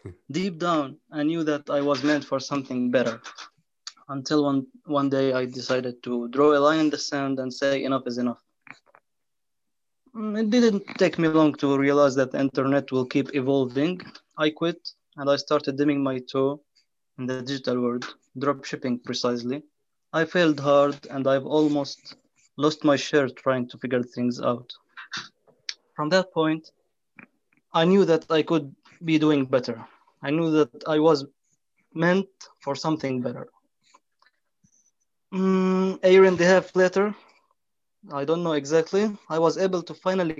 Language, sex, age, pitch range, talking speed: English, male, 20-39, 135-165 Hz, 160 wpm